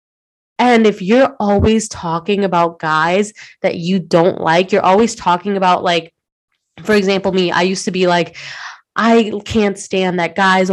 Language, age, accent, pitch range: English, 20-39, American, 170-195 Hz